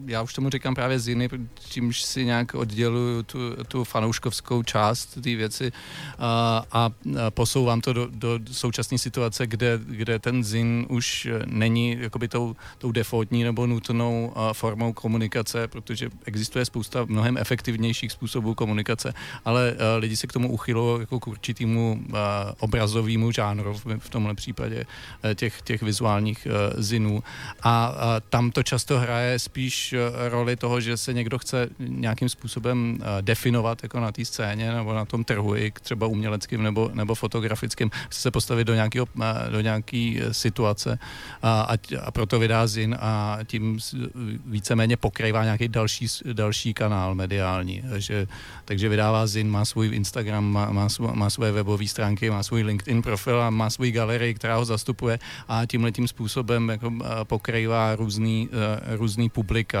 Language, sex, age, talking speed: Czech, male, 40-59, 145 wpm